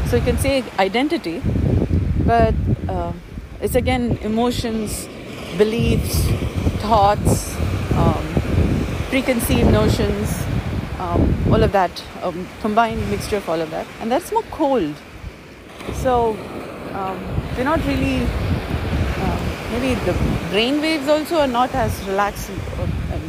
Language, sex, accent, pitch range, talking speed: English, female, Indian, 200-255 Hz, 115 wpm